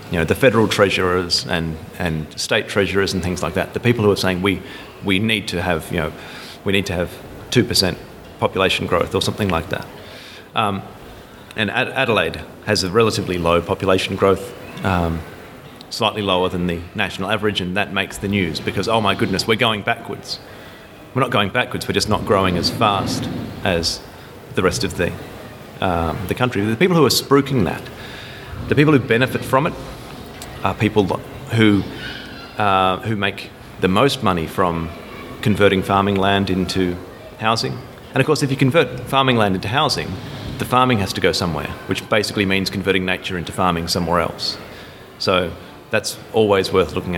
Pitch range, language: 95-115 Hz, English